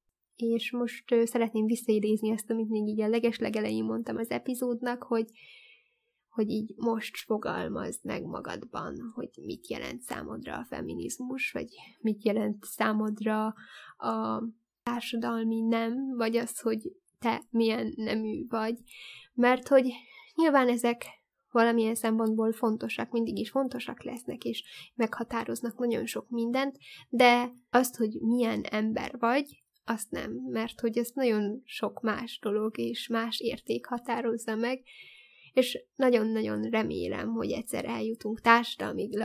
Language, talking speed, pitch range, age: Hungarian, 125 wpm, 215-245 Hz, 10-29